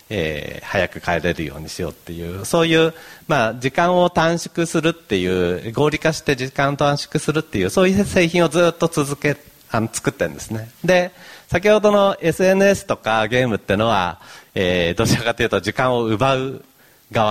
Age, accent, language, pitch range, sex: 40-59, native, Japanese, 100-155 Hz, male